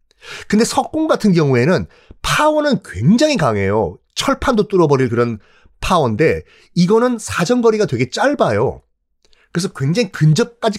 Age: 30-49